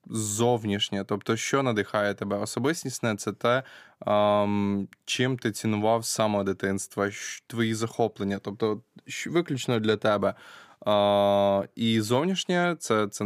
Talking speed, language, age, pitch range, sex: 110 wpm, Ukrainian, 20-39, 105-115 Hz, male